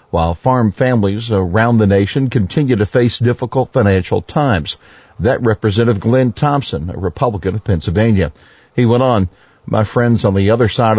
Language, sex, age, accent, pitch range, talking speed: English, male, 50-69, American, 100-125 Hz, 160 wpm